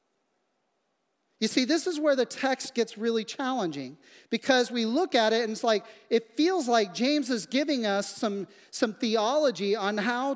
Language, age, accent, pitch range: English, 40-59, American, 210-270 Hz